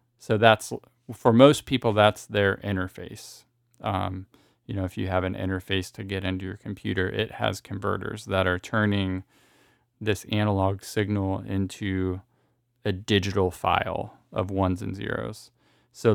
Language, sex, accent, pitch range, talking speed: English, male, American, 100-120 Hz, 145 wpm